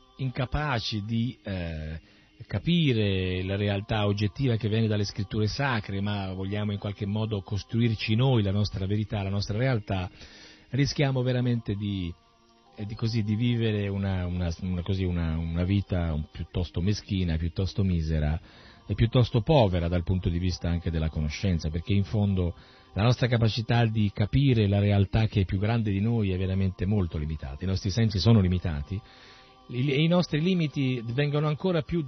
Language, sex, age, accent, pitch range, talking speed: Italian, male, 40-59, native, 95-125 Hz, 160 wpm